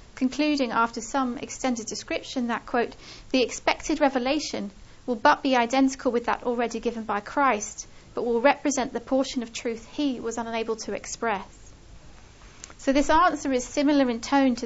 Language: English